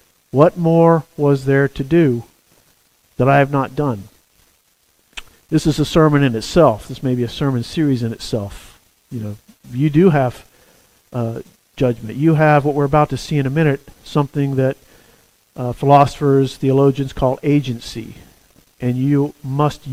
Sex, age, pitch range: male, 50-69, 125-150 Hz